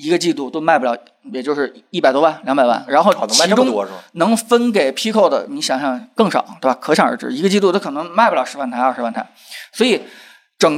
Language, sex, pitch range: Chinese, male, 145-230 Hz